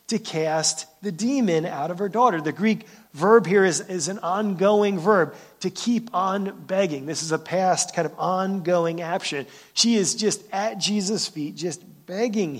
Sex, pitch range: male, 155-200 Hz